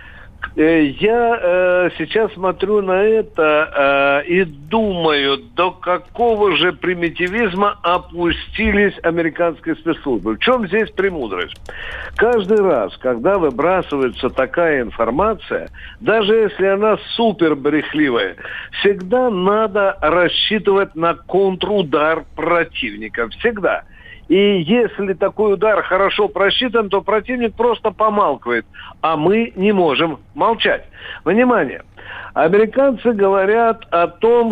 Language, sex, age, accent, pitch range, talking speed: Russian, male, 60-79, native, 170-225 Hz, 100 wpm